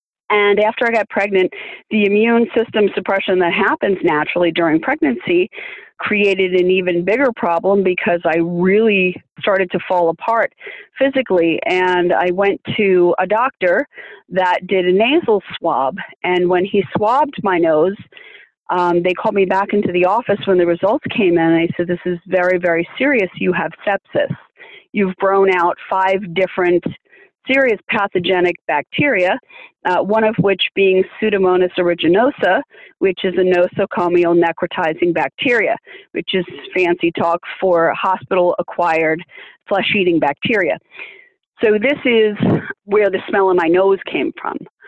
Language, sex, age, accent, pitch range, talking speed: English, female, 30-49, American, 180-220 Hz, 145 wpm